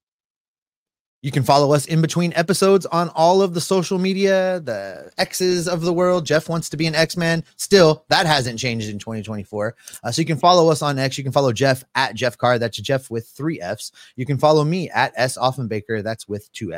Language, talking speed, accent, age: English, 220 wpm, American, 30-49